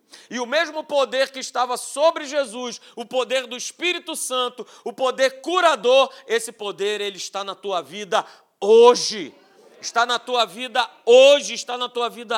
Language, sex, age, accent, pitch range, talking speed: Portuguese, male, 40-59, Brazilian, 215-265 Hz, 155 wpm